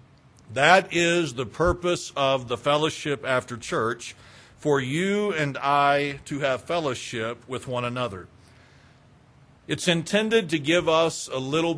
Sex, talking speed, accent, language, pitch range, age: male, 130 wpm, American, English, 125-160 Hz, 50-69